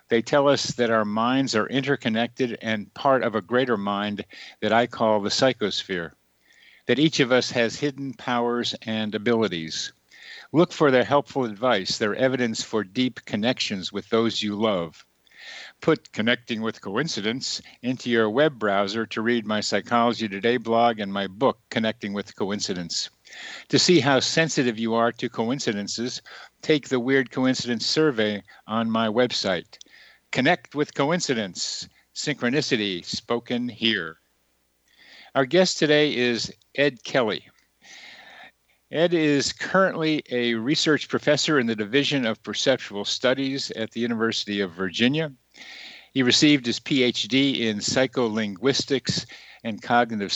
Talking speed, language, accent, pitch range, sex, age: 135 wpm, English, American, 110-135 Hz, male, 50-69